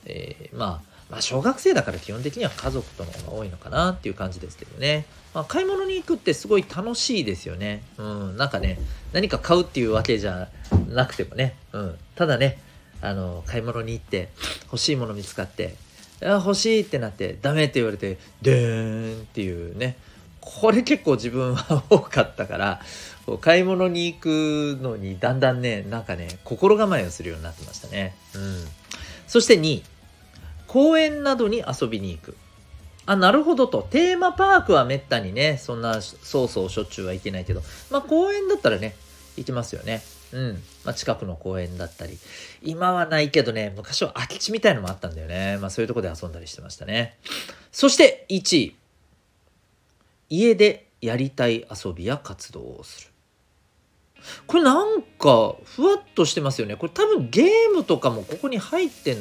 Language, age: Japanese, 40-59